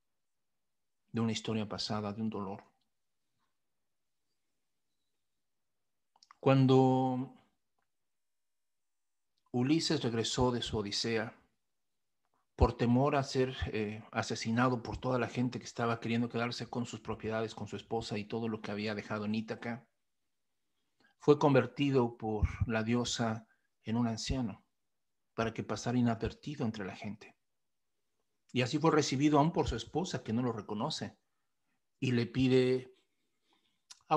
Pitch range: 110-130 Hz